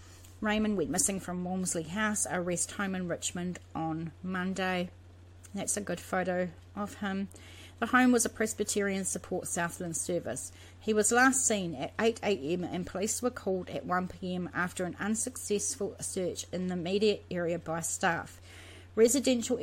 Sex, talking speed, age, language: female, 155 wpm, 30-49, English